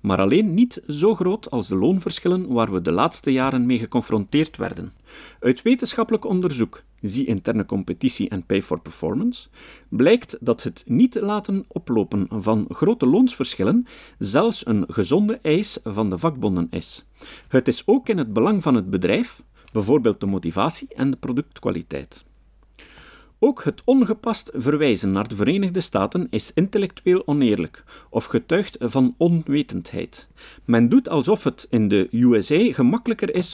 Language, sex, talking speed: Dutch, male, 145 wpm